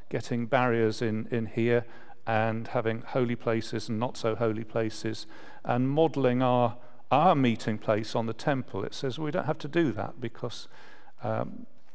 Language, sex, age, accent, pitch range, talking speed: English, male, 40-59, British, 120-140 Hz, 165 wpm